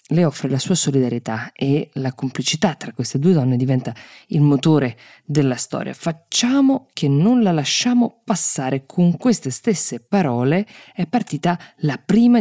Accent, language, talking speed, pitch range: native, Italian, 150 wpm, 130-170 Hz